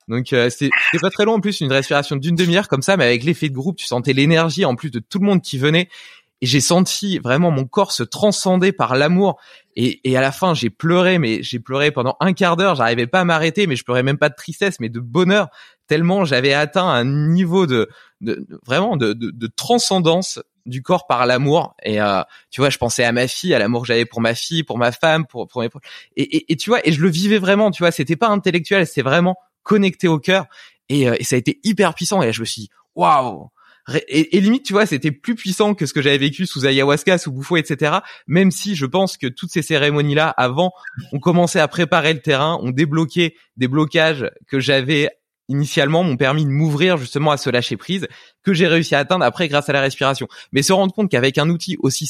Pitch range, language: 135-185 Hz, French